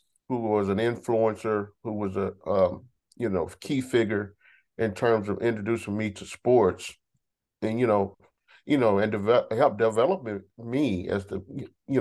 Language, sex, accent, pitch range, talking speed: English, male, American, 95-110 Hz, 160 wpm